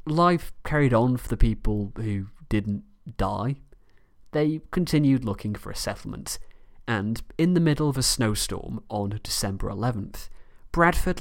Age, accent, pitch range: 30-49, British, 100-130 Hz